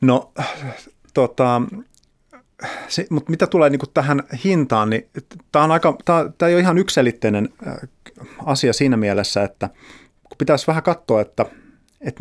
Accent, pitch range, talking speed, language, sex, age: native, 115-145 Hz, 120 wpm, Finnish, male, 30-49